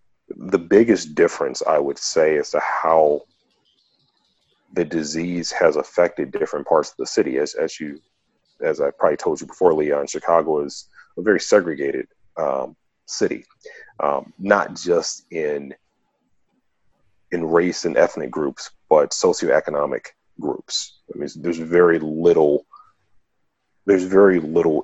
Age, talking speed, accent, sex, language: 40-59, 135 wpm, American, male, English